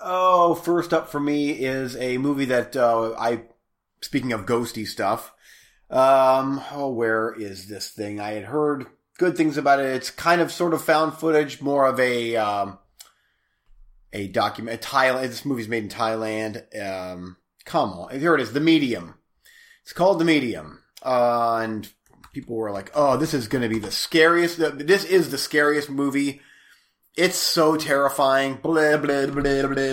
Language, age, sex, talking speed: English, 30-49, male, 170 wpm